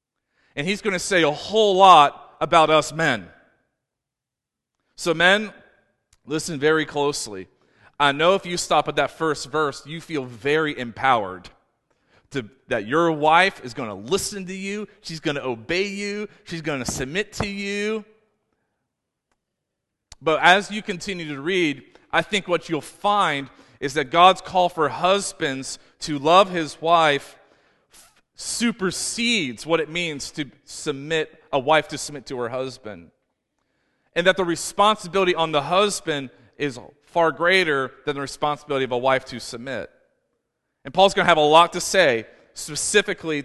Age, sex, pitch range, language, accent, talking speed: 40-59, male, 145-185 Hz, English, American, 150 wpm